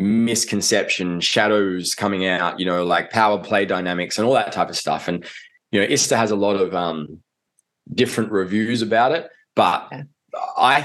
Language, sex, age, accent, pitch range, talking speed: English, male, 20-39, Australian, 95-115 Hz, 170 wpm